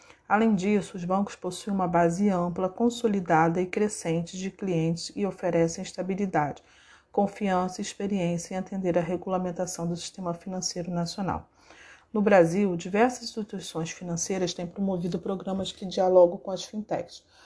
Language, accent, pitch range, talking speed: Portuguese, Brazilian, 170-195 Hz, 140 wpm